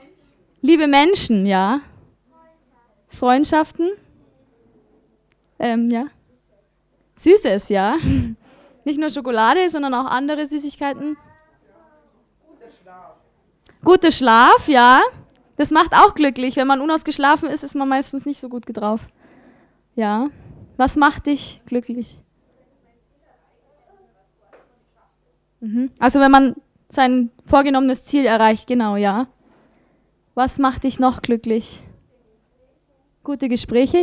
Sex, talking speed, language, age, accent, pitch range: female, 100 wpm, English, 20-39, German, 235-290 Hz